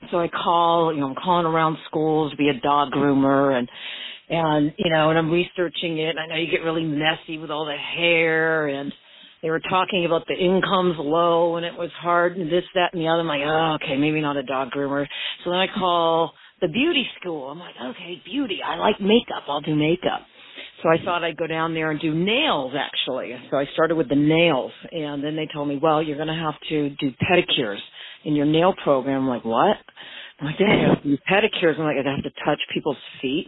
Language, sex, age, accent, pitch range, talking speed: English, female, 50-69, American, 155-215 Hz, 225 wpm